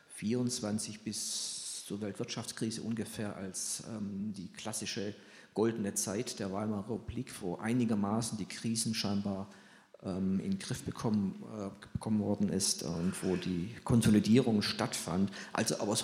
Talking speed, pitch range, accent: 130 wpm, 105-130 Hz, German